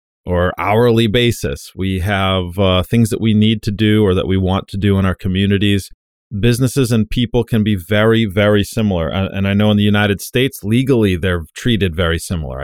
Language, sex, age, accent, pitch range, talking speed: English, male, 30-49, American, 90-115 Hz, 200 wpm